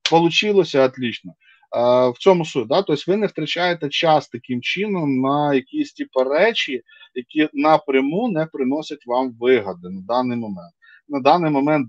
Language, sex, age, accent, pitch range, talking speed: Ukrainian, male, 20-39, native, 130-180 Hz, 145 wpm